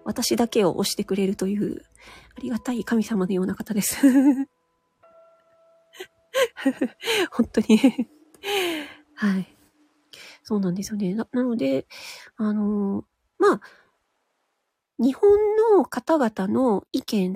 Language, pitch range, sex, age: Japanese, 200-320 Hz, female, 40-59